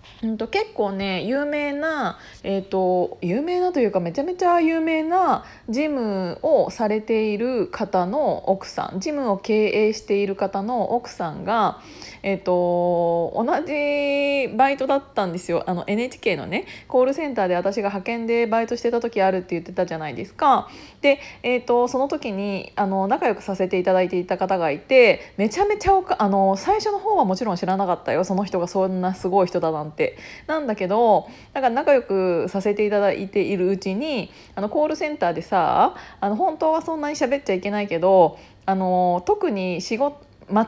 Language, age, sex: Japanese, 20-39, female